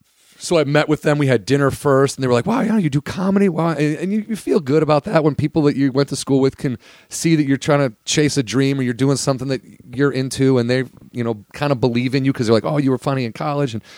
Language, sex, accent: English, male, American